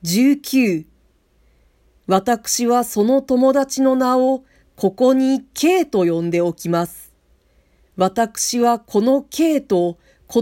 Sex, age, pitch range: female, 40-59, 175-285 Hz